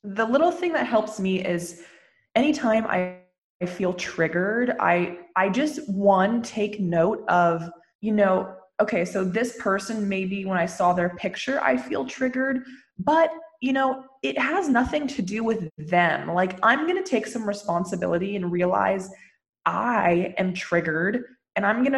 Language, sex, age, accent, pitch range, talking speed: English, female, 20-39, American, 180-230 Hz, 160 wpm